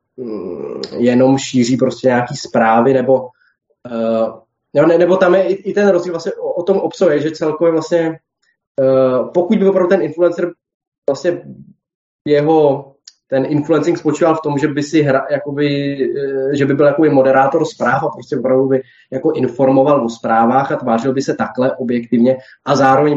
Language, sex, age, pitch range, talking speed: Czech, male, 20-39, 130-160 Hz, 165 wpm